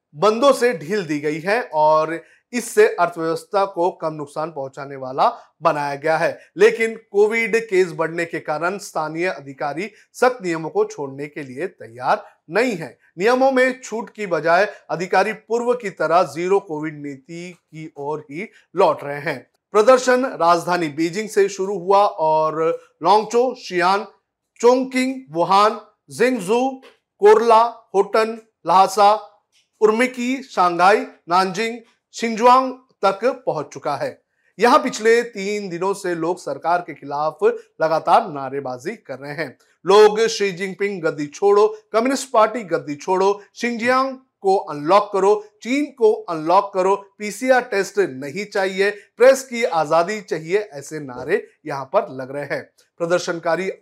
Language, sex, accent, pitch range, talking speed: Hindi, male, native, 165-225 Hz, 135 wpm